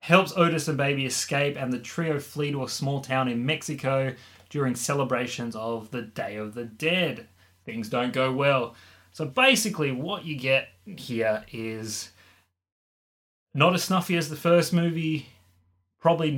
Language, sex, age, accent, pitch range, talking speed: English, male, 20-39, Australian, 110-145 Hz, 155 wpm